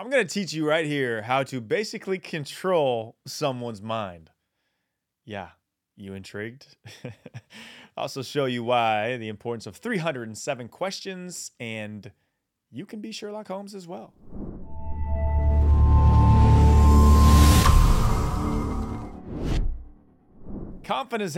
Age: 30-49